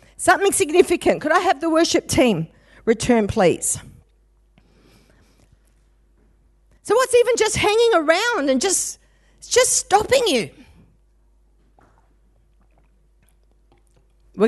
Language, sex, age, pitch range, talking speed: English, female, 50-69, 210-285 Hz, 90 wpm